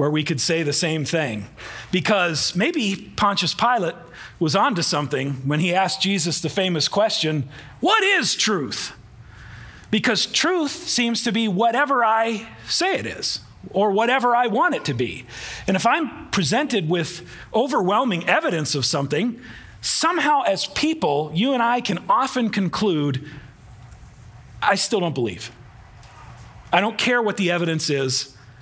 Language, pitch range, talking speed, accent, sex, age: English, 145-220 Hz, 145 wpm, American, male, 40-59